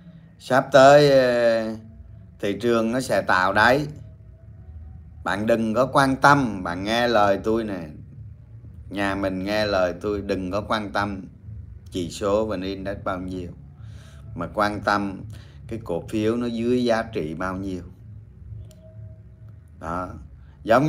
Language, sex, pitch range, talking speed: Vietnamese, male, 95-140 Hz, 135 wpm